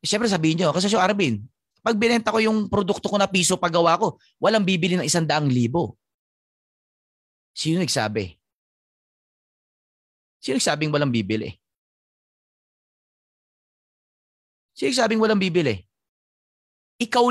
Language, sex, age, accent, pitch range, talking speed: Filipino, male, 30-49, native, 140-215 Hz, 115 wpm